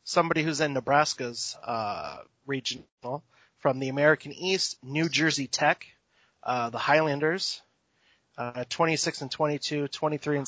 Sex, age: male, 30-49